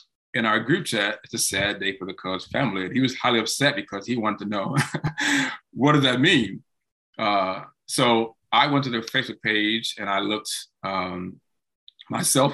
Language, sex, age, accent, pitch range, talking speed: English, male, 20-39, American, 105-130 Hz, 185 wpm